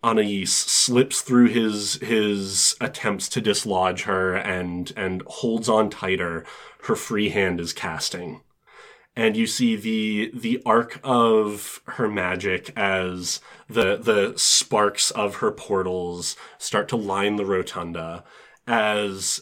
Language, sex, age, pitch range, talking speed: English, male, 30-49, 90-110 Hz, 125 wpm